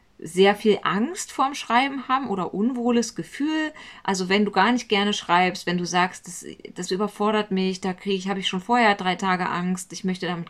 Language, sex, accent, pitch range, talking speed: German, female, German, 175-220 Hz, 200 wpm